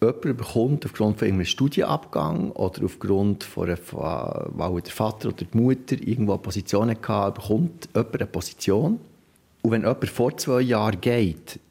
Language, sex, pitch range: German, male, 100-125 Hz